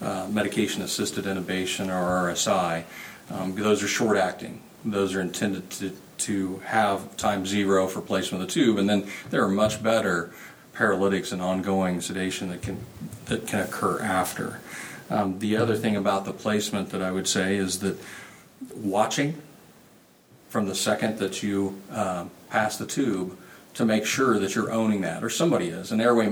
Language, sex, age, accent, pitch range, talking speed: English, male, 40-59, American, 95-110 Hz, 165 wpm